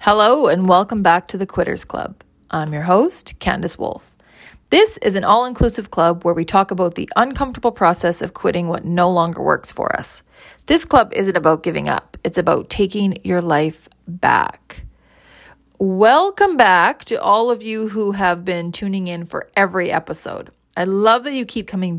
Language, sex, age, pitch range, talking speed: English, female, 30-49, 180-230 Hz, 175 wpm